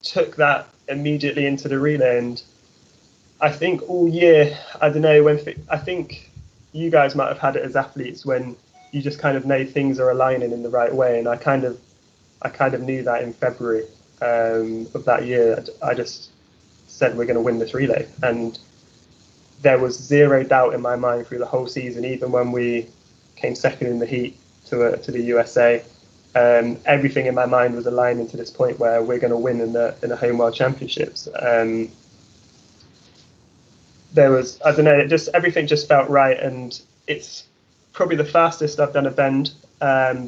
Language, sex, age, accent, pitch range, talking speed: English, male, 20-39, British, 120-140 Hz, 195 wpm